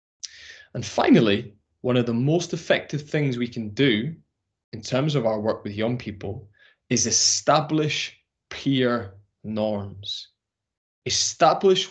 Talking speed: 120 wpm